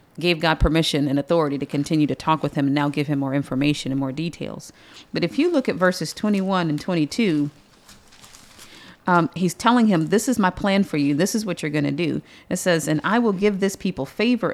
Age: 40-59